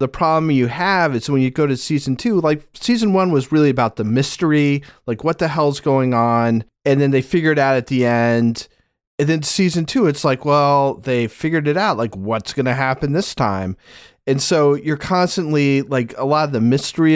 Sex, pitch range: male, 115-145 Hz